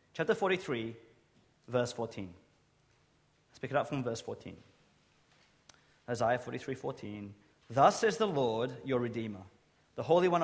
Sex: male